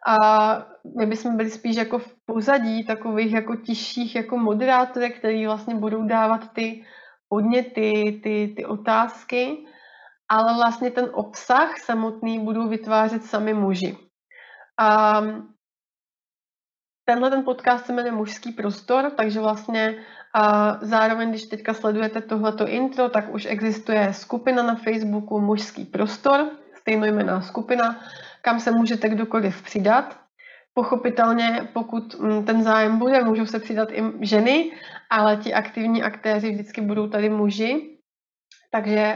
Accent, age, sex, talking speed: native, 30-49, female, 125 wpm